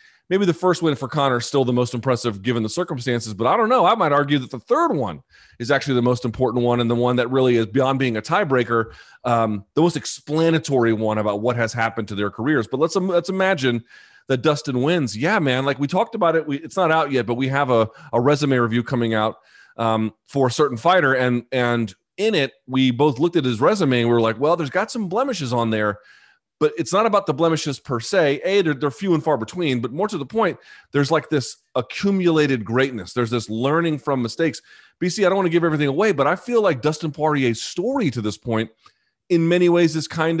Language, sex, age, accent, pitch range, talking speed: English, male, 30-49, American, 120-165 Hz, 240 wpm